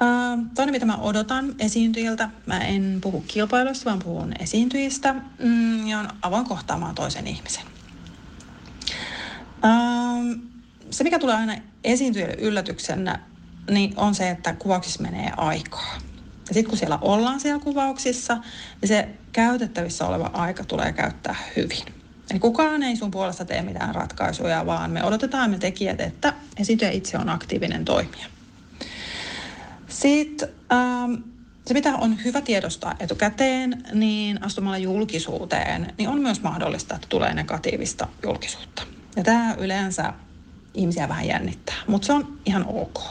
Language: Finnish